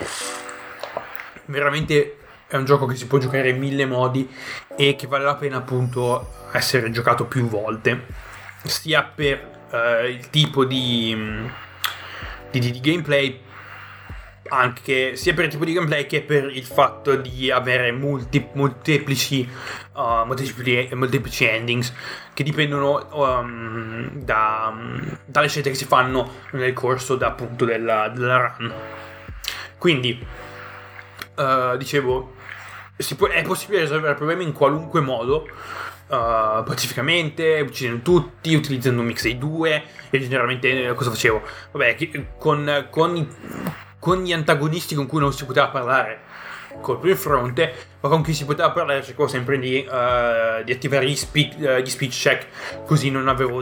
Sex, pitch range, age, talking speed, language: male, 120-145 Hz, 20-39, 140 wpm, Italian